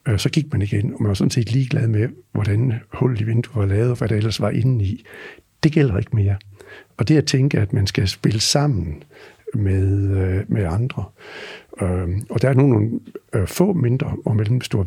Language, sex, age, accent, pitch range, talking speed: Danish, male, 60-79, native, 100-130 Hz, 205 wpm